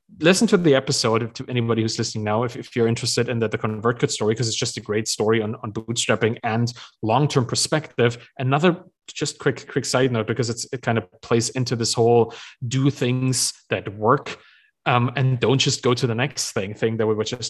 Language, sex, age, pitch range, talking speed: English, male, 30-49, 120-155 Hz, 225 wpm